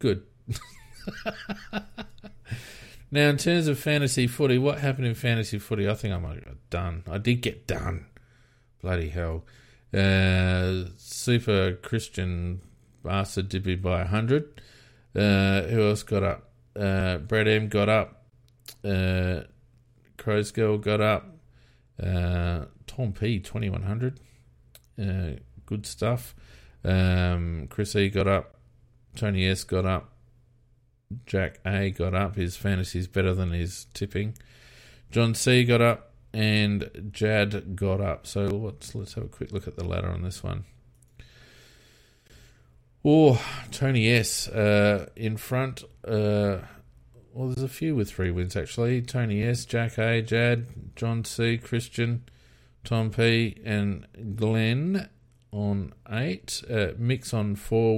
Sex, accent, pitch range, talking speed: male, Australian, 95-120 Hz, 135 wpm